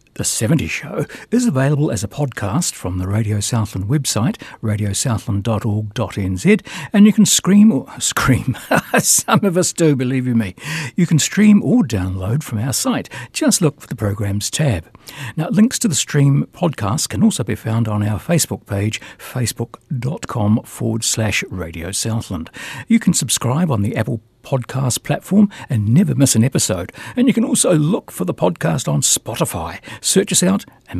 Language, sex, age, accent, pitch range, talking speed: English, male, 60-79, British, 110-165 Hz, 165 wpm